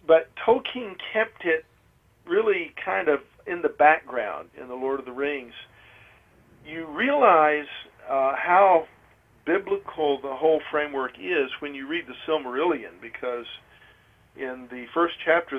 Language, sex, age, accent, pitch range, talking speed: English, male, 50-69, American, 125-155 Hz, 135 wpm